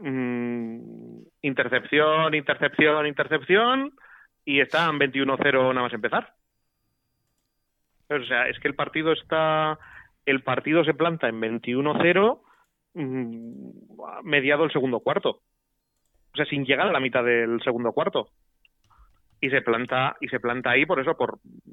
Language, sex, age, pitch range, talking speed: Spanish, male, 30-49, 120-145 Hz, 125 wpm